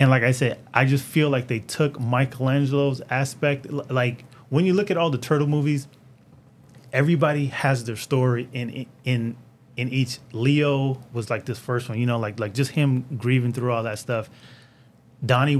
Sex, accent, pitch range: male, American, 115-135 Hz